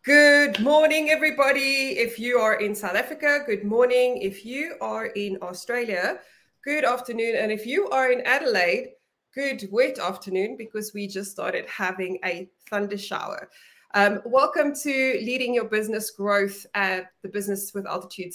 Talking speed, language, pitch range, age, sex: 150 wpm, English, 200-265 Hz, 20-39, female